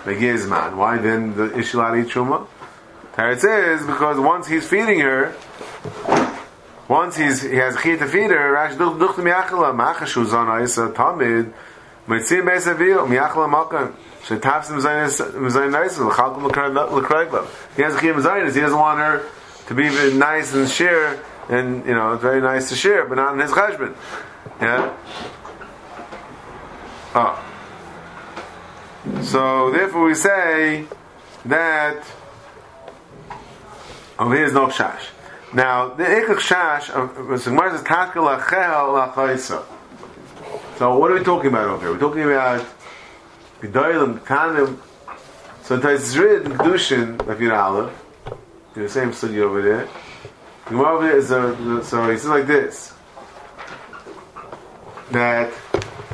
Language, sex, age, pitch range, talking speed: English, male, 30-49, 120-155 Hz, 100 wpm